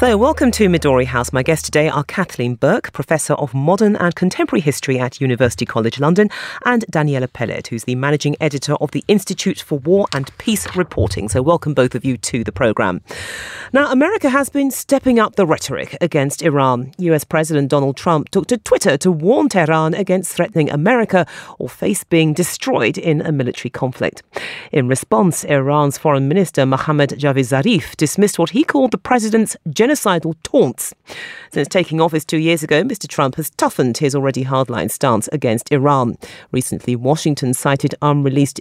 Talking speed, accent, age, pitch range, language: 175 wpm, British, 40-59, 135-185 Hz, English